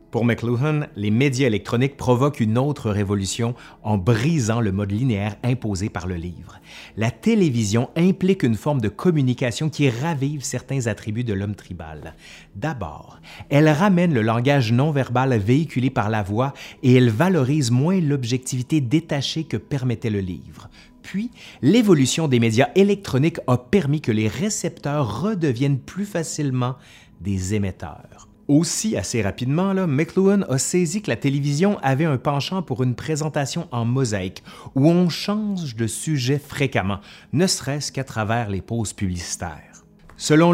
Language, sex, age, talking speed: French, male, 30-49, 145 wpm